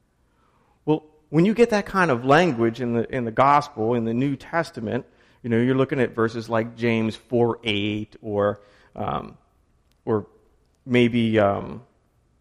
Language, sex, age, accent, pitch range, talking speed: English, male, 40-59, American, 110-135 Hz, 145 wpm